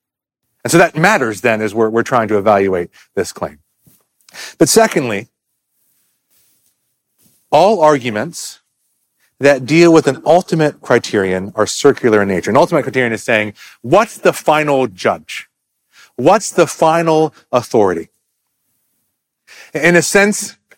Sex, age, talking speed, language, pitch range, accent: male, 30-49, 125 wpm, English, 120-160 Hz, American